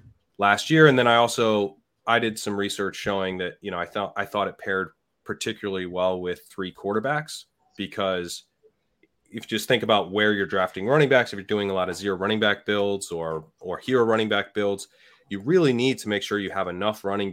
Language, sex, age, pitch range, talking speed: English, male, 30-49, 95-110 Hz, 215 wpm